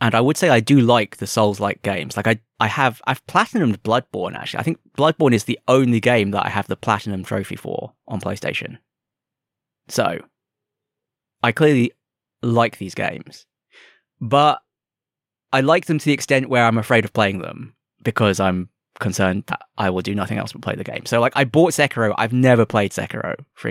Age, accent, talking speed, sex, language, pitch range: 20-39, British, 195 wpm, male, English, 105-135 Hz